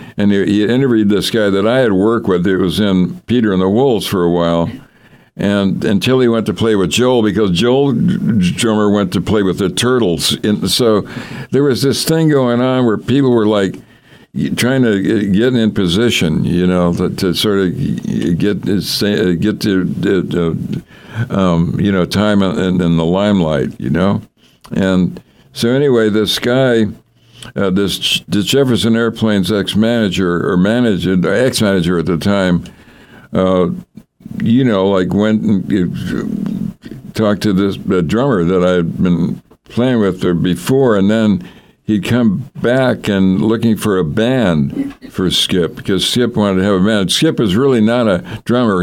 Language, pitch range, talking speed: English, 95-120 Hz, 165 wpm